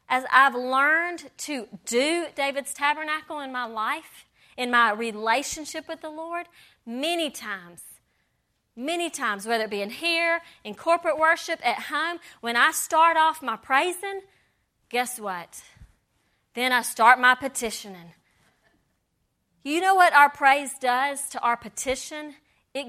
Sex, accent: female, American